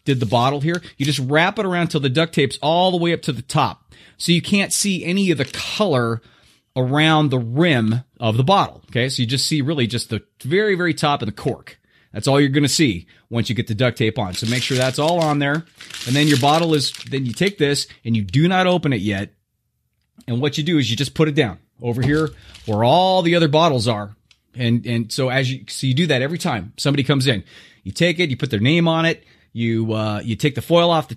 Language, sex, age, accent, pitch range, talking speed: English, male, 30-49, American, 110-155 Hz, 255 wpm